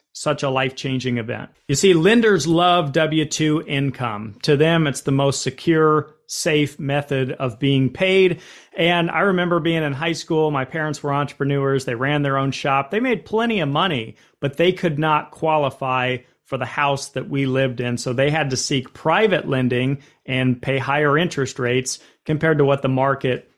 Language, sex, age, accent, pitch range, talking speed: English, male, 40-59, American, 135-170 Hz, 180 wpm